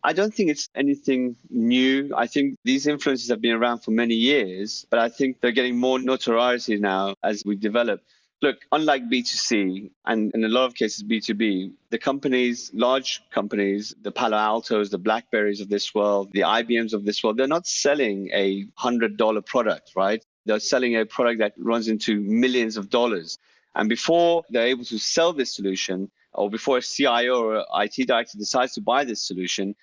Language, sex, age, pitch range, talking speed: English, male, 30-49, 105-130 Hz, 185 wpm